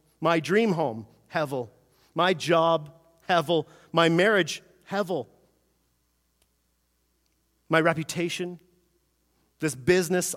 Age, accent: 40-59, American